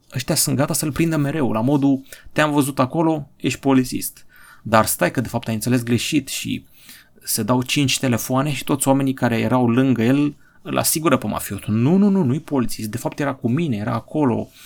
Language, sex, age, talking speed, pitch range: Romanian, male, 30-49, 205 wpm, 115-140 Hz